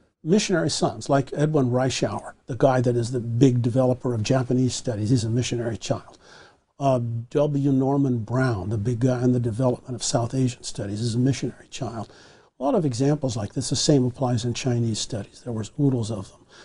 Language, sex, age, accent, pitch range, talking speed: English, male, 50-69, American, 120-150 Hz, 195 wpm